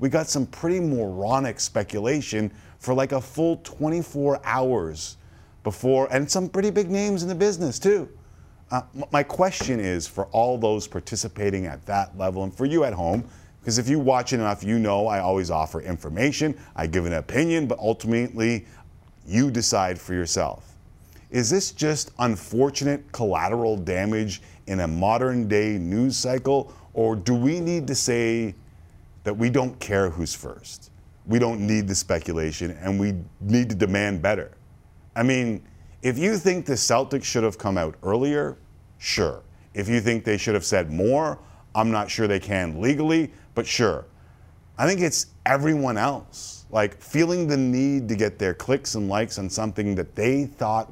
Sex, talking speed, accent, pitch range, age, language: male, 170 wpm, American, 95-130 Hz, 40-59, English